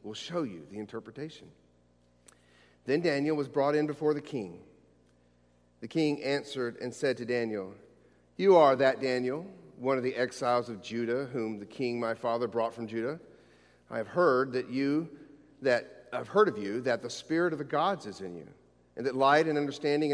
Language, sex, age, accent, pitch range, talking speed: English, male, 40-59, American, 105-140 Hz, 185 wpm